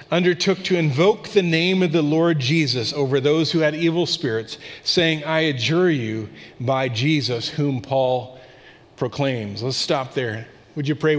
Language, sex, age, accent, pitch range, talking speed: English, male, 40-59, American, 130-160 Hz, 160 wpm